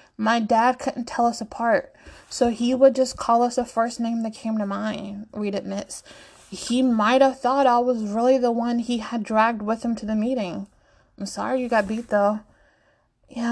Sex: female